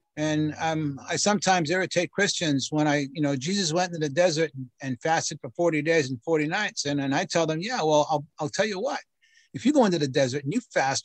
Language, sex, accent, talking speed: English, male, American, 240 wpm